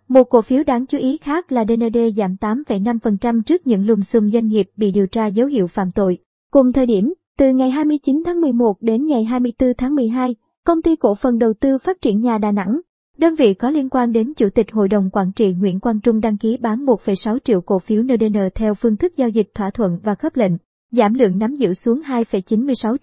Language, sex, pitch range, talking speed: Vietnamese, male, 215-255 Hz, 225 wpm